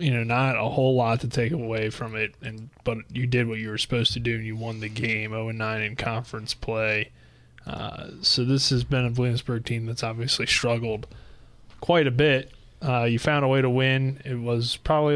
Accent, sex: American, male